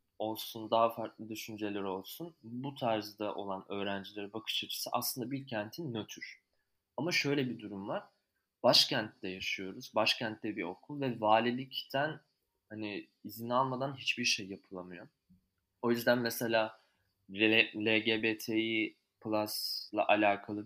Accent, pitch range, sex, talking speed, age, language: native, 100-120 Hz, male, 115 wpm, 20-39, Turkish